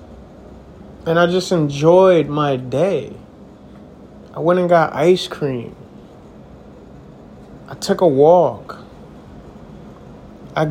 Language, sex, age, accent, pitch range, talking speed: English, male, 30-49, American, 135-180 Hz, 95 wpm